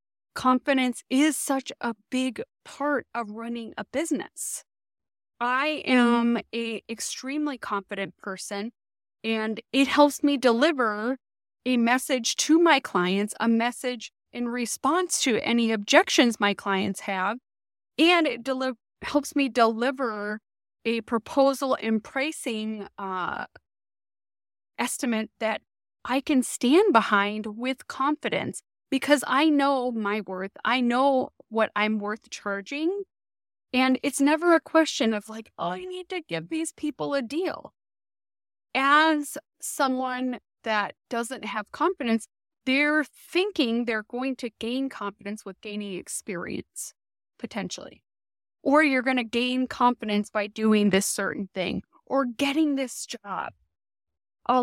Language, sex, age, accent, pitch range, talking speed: English, female, 20-39, American, 210-275 Hz, 125 wpm